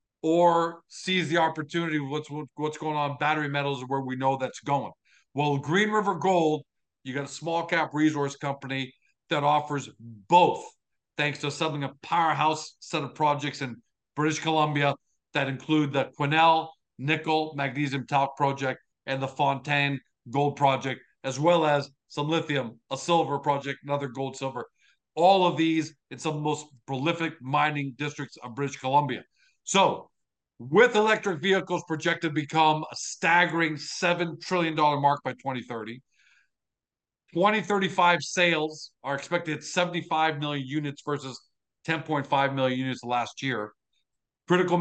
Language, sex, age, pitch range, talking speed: English, male, 50-69, 140-165 Hz, 145 wpm